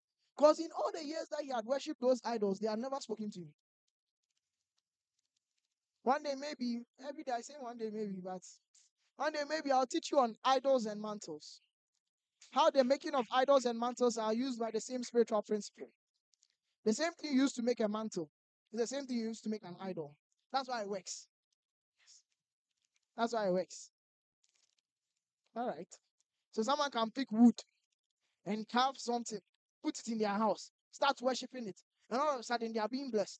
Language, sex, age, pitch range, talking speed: English, male, 20-39, 215-275 Hz, 190 wpm